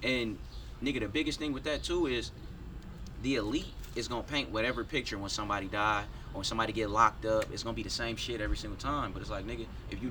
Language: English